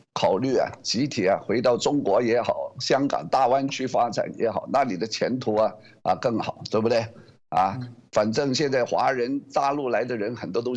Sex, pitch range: male, 125-160 Hz